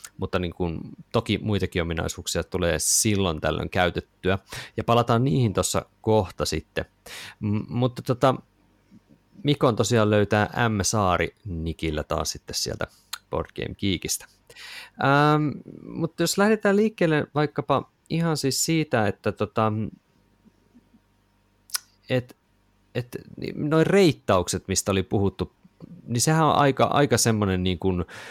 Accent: native